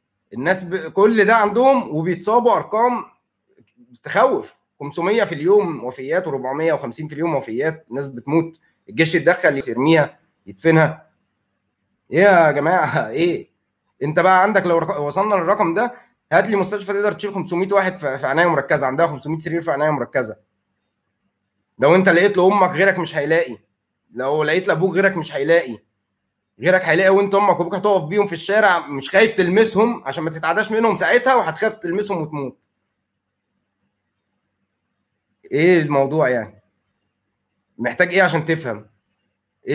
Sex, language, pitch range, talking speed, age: male, Arabic, 135-200 Hz, 135 wpm, 20-39